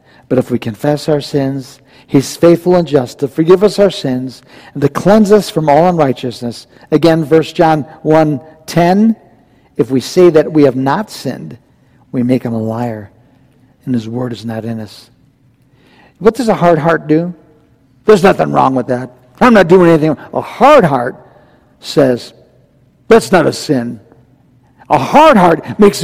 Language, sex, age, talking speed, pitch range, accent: English, male, 60-79, 170 wpm, 130-180 Hz, American